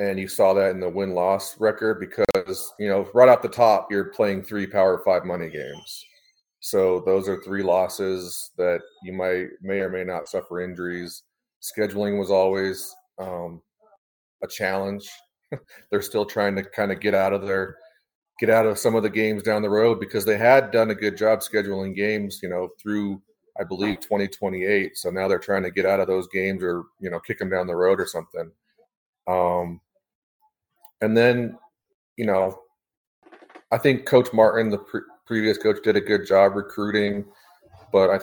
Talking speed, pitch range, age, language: 185 wpm, 95-115 Hz, 30-49, English